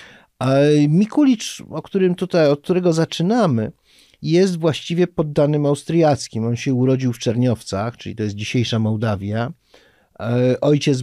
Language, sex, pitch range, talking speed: Polish, male, 115-140 Hz, 120 wpm